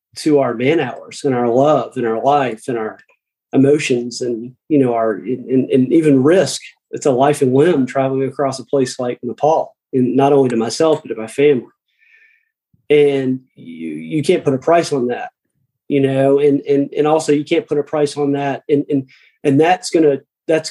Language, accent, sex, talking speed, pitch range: English, American, male, 205 wpm, 130-150 Hz